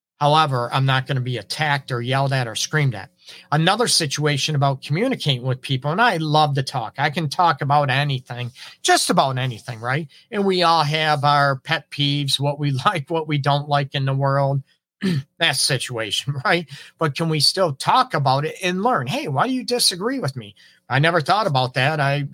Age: 40-59